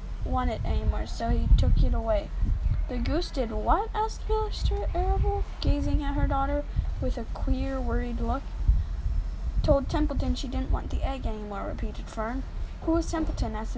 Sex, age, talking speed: female, 10-29, 165 wpm